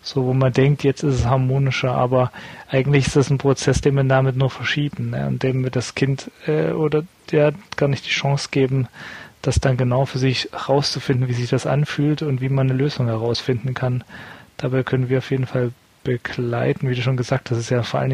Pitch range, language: 125-145 Hz, German